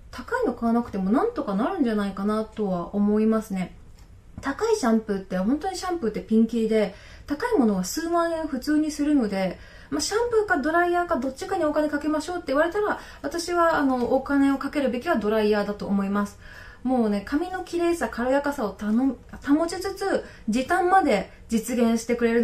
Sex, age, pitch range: female, 20-39, 225-320 Hz